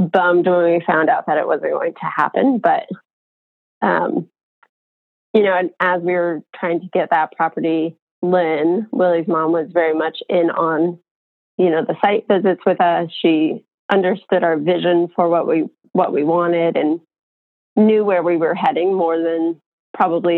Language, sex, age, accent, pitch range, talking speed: English, female, 20-39, American, 165-185 Hz, 170 wpm